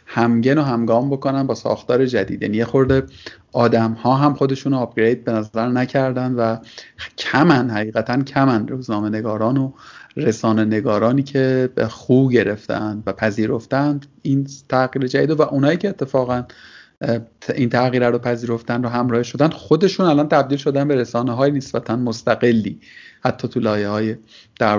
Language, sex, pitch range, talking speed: Persian, male, 120-150 Hz, 140 wpm